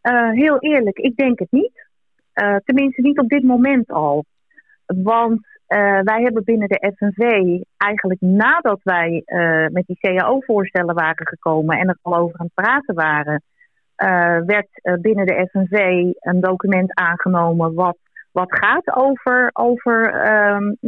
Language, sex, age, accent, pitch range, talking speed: Dutch, female, 30-49, Dutch, 180-245 Hz, 150 wpm